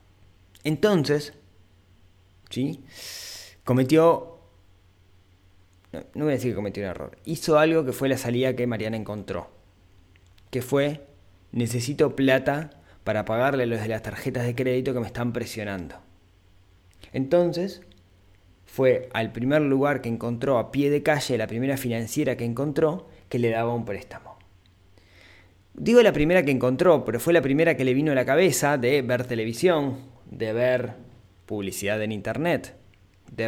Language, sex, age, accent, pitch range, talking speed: Spanish, male, 20-39, Argentinian, 95-135 Hz, 145 wpm